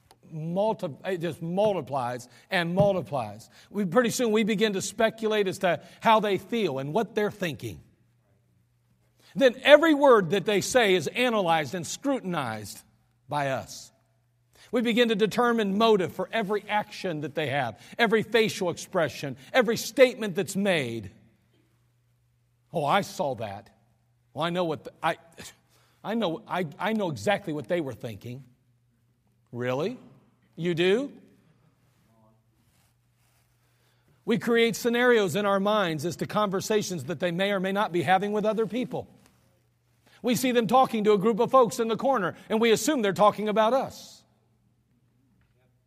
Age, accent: 50-69, American